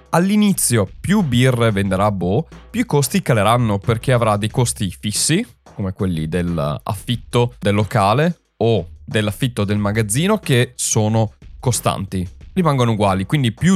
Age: 20-39